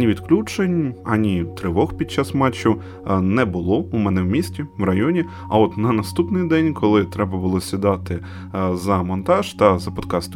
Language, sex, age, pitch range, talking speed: Ukrainian, male, 20-39, 95-135 Hz, 170 wpm